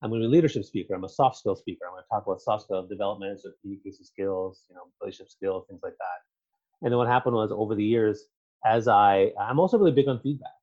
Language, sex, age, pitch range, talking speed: English, male, 30-49, 100-135 Hz, 260 wpm